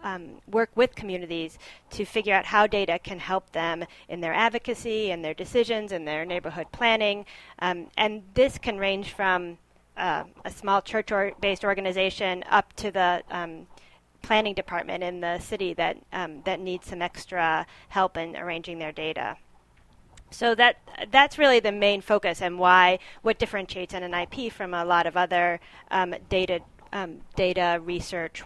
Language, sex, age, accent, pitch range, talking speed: English, female, 30-49, American, 175-210 Hz, 160 wpm